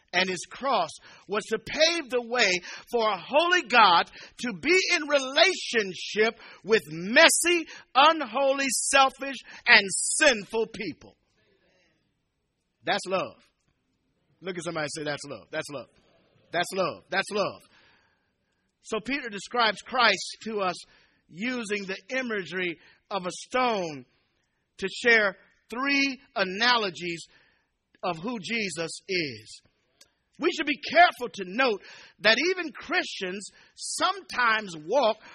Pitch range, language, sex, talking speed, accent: 195-270 Hz, English, male, 120 wpm, American